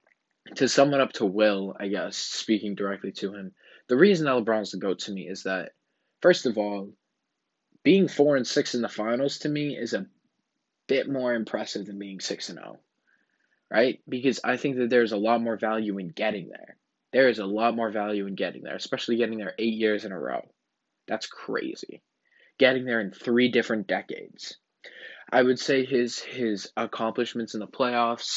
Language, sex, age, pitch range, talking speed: English, male, 20-39, 100-120 Hz, 190 wpm